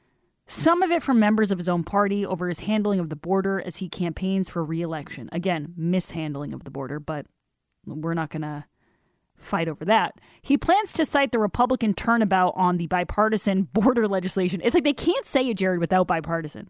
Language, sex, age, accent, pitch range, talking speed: English, female, 20-39, American, 180-235 Hz, 195 wpm